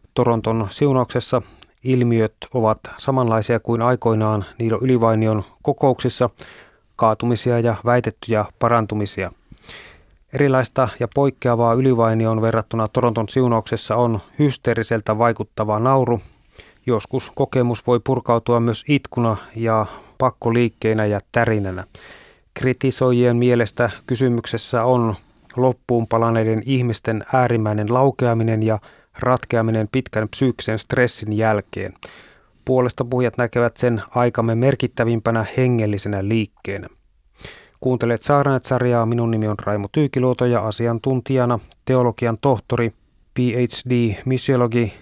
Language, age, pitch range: Finnish, 30-49, 110-125 Hz